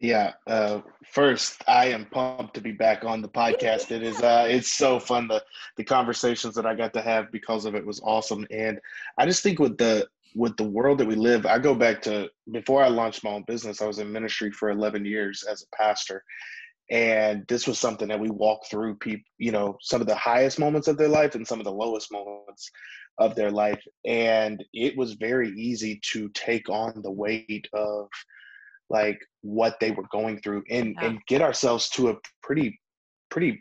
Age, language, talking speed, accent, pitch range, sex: 20-39, English, 205 wpm, American, 105-125 Hz, male